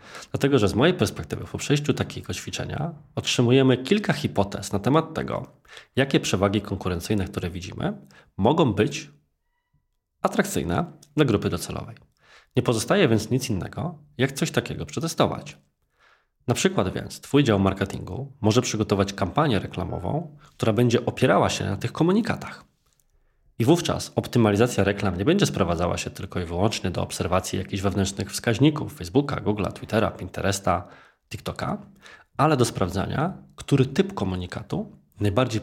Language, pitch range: Polish, 100-130 Hz